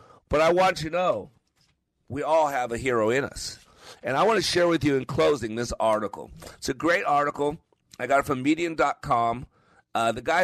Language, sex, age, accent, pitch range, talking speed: English, male, 50-69, American, 115-155 Hz, 200 wpm